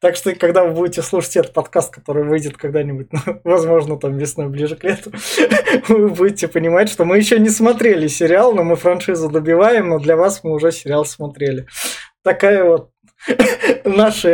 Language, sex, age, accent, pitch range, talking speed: Russian, male, 20-39, native, 155-190 Hz, 170 wpm